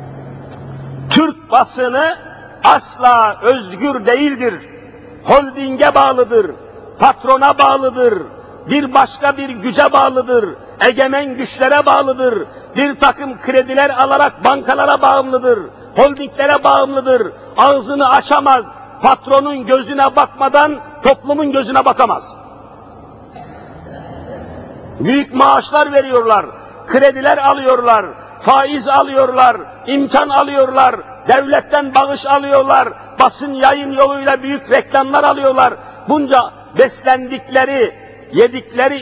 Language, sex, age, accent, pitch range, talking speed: Turkish, male, 50-69, native, 255-290 Hz, 85 wpm